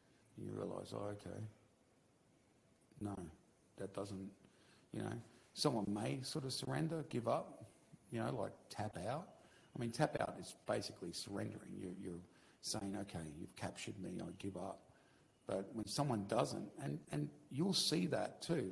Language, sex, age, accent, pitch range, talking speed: English, male, 50-69, Australian, 100-120 Hz, 150 wpm